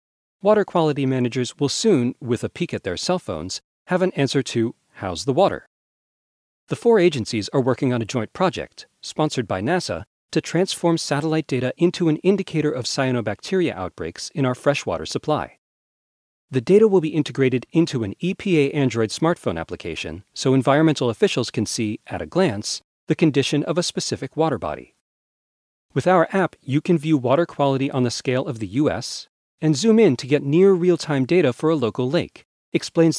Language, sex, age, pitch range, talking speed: English, male, 40-59, 120-170 Hz, 175 wpm